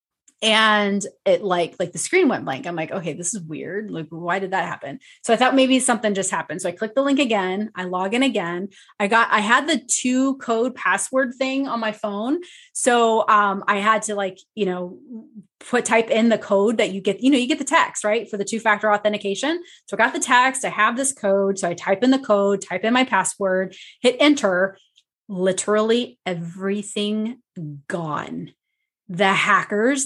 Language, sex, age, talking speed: English, female, 20-39, 205 wpm